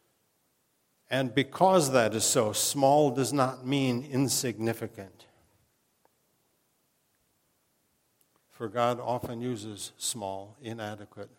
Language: English